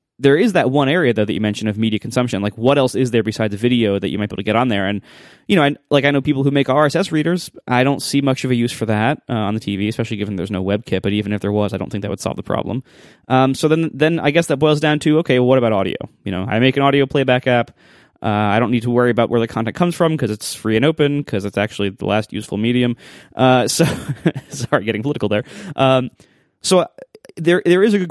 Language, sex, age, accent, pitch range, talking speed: English, male, 20-39, American, 105-140 Hz, 280 wpm